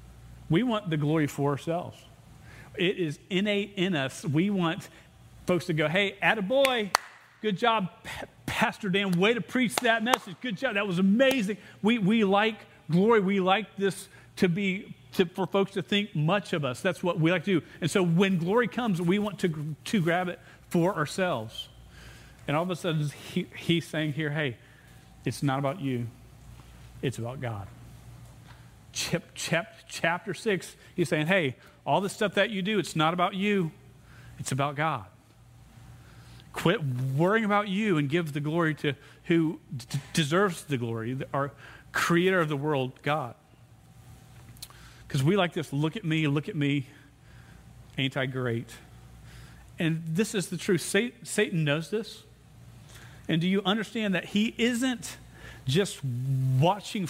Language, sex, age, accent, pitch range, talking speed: English, male, 40-59, American, 130-195 Hz, 165 wpm